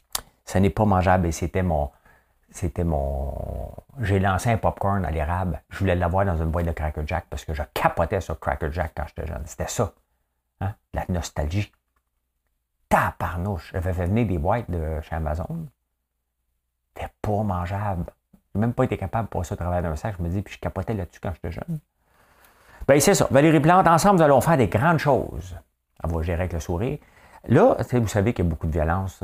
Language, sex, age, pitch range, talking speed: French, male, 50-69, 65-100 Hz, 205 wpm